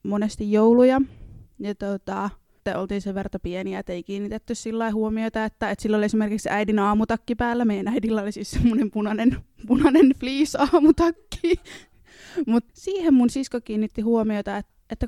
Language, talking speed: Finnish, 145 wpm